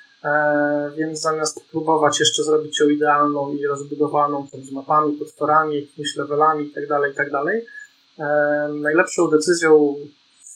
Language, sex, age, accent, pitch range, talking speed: Polish, male, 30-49, native, 145-180 Hz, 135 wpm